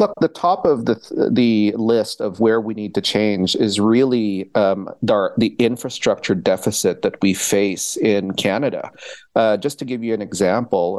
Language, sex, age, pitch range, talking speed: English, male, 40-59, 105-125 Hz, 175 wpm